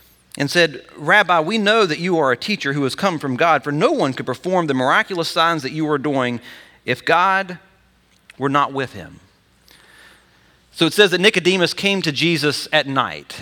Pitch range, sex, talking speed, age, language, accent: 135-170 Hz, male, 190 wpm, 40-59, English, American